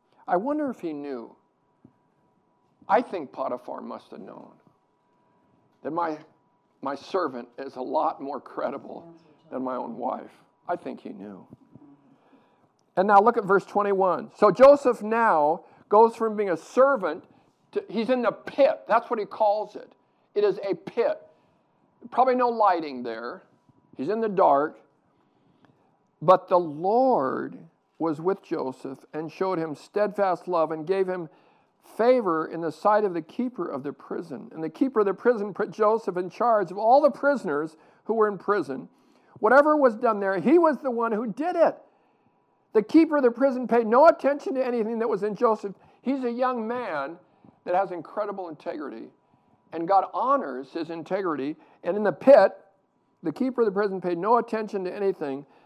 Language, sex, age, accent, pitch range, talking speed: English, male, 60-79, American, 175-245 Hz, 170 wpm